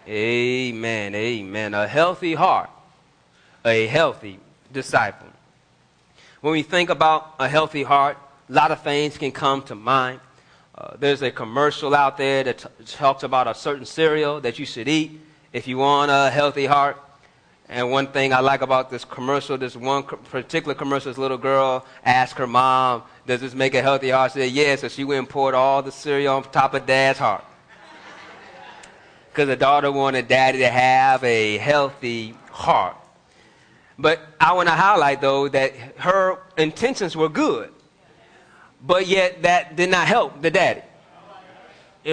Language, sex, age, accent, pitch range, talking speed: English, male, 30-49, American, 130-155 Hz, 160 wpm